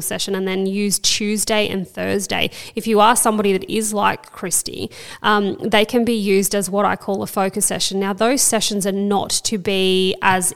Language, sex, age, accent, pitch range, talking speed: English, female, 20-39, Australian, 190-220 Hz, 200 wpm